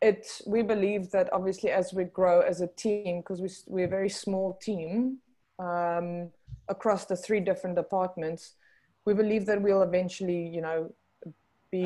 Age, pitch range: 20-39, 175-195 Hz